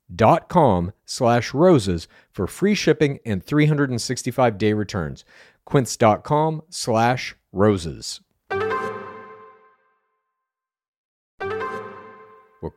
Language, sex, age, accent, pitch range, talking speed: English, male, 40-59, American, 100-140 Hz, 70 wpm